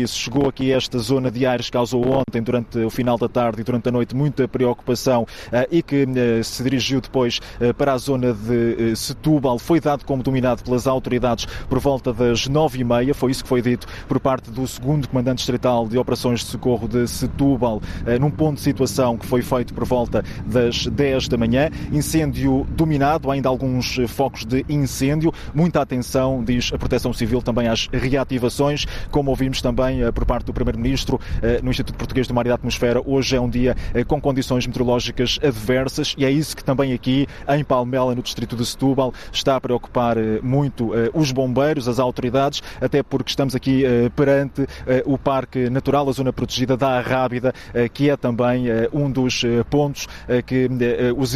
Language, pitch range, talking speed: Portuguese, 120-135 Hz, 180 wpm